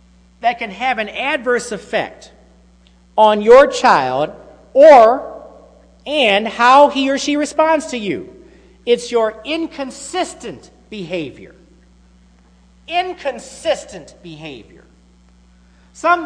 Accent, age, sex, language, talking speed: American, 50-69, male, English, 90 wpm